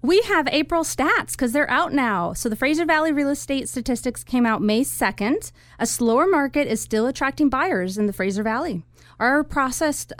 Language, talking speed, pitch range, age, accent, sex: English, 190 wpm, 200-275 Hz, 30-49, American, female